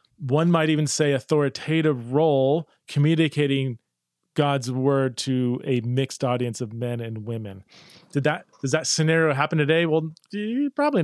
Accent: American